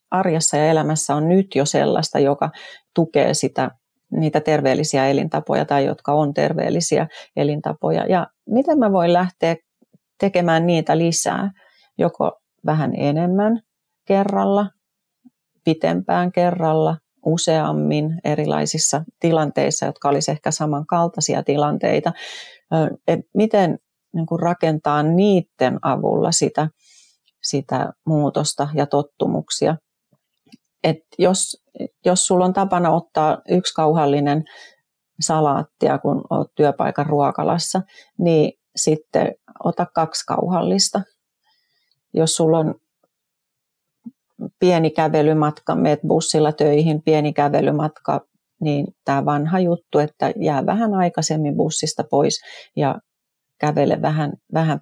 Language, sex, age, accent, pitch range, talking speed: Finnish, female, 30-49, native, 150-180 Hz, 100 wpm